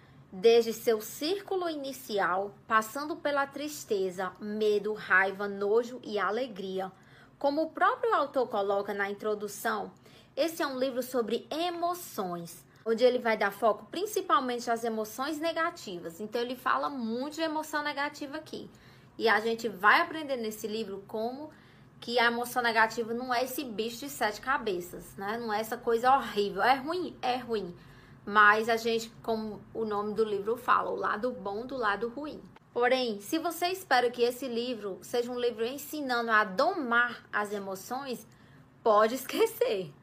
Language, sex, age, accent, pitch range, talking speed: Portuguese, female, 20-39, Brazilian, 210-280 Hz, 155 wpm